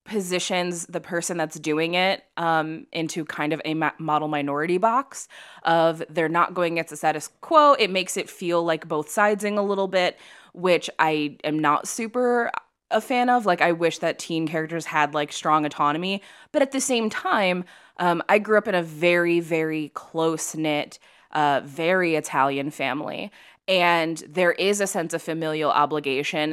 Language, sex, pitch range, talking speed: English, female, 155-195 Hz, 175 wpm